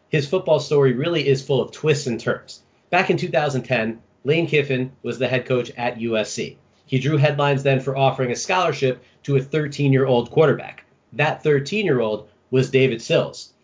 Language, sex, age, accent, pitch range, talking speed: English, male, 30-49, American, 125-150 Hz, 165 wpm